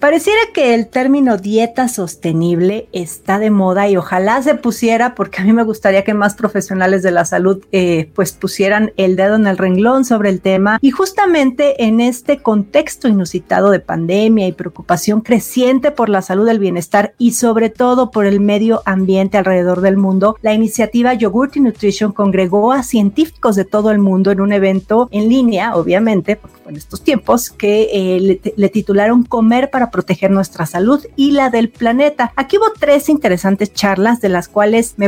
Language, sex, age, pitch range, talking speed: Spanish, female, 40-59, 195-255 Hz, 185 wpm